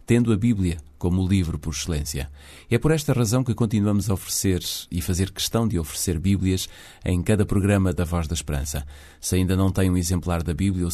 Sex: male